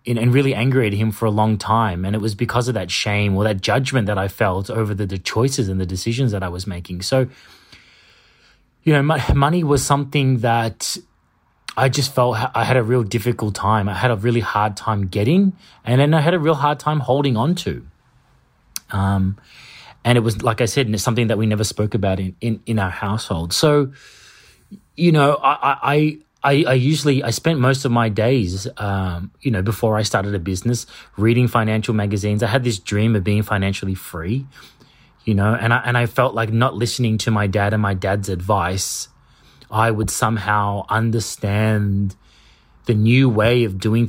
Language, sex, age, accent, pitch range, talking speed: English, male, 30-49, Australian, 100-125 Hz, 205 wpm